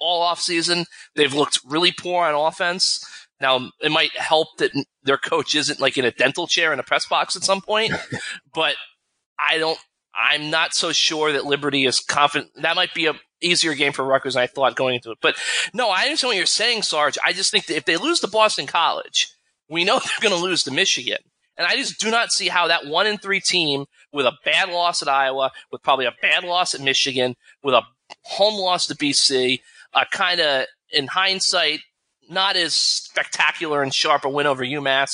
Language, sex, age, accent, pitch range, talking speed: English, male, 20-39, American, 140-195 Hz, 215 wpm